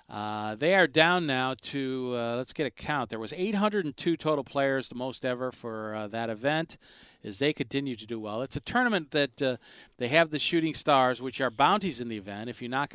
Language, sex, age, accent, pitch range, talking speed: English, male, 40-59, American, 100-130 Hz, 220 wpm